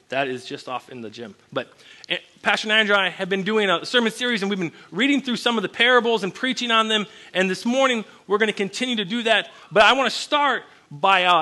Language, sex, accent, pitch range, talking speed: English, male, American, 185-250 Hz, 245 wpm